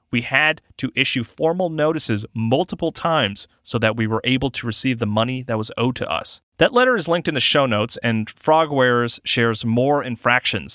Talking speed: 195 wpm